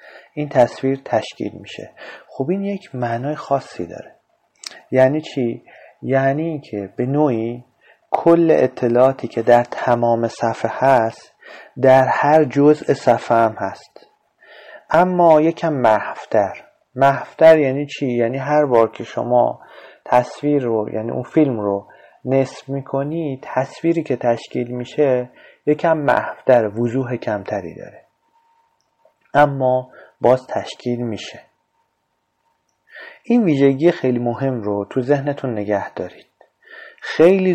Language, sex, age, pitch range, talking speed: Persian, male, 30-49, 115-150 Hz, 110 wpm